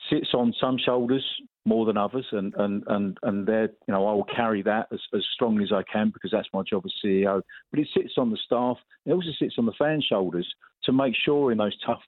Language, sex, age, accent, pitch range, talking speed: English, male, 40-59, British, 105-130 Hz, 245 wpm